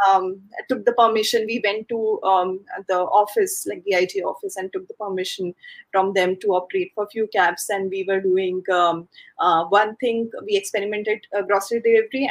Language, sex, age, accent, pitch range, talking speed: English, female, 20-39, Indian, 195-240 Hz, 190 wpm